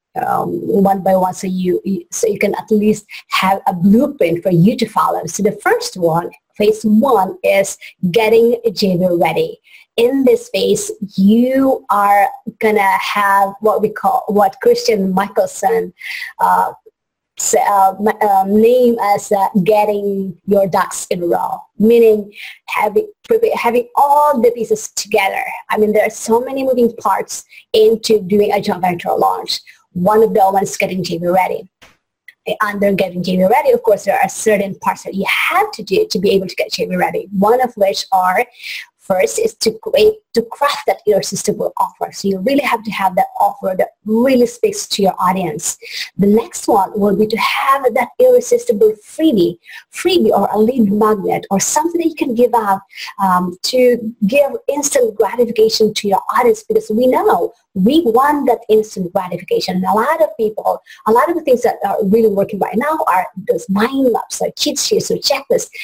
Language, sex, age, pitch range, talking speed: English, female, 20-39, 195-290 Hz, 175 wpm